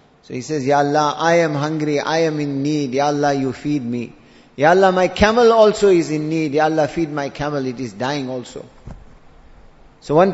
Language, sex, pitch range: English, male, 145-175 Hz